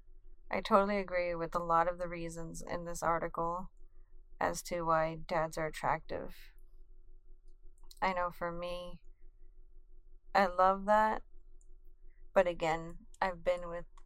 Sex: female